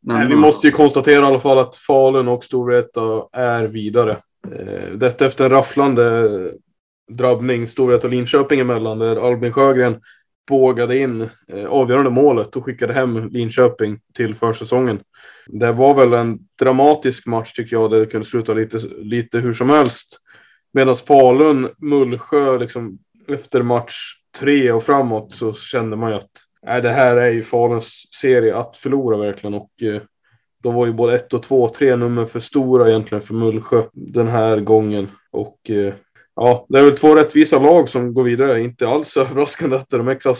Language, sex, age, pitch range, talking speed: Swedish, male, 20-39, 115-135 Hz, 170 wpm